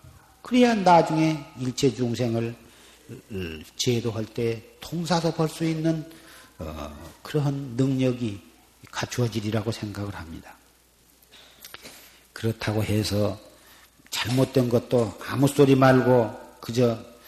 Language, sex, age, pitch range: Korean, male, 40-59, 110-135 Hz